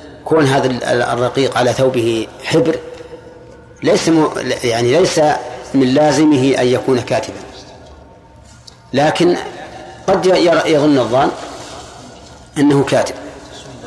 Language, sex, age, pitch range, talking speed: Arabic, male, 40-59, 130-155 Hz, 80 wpm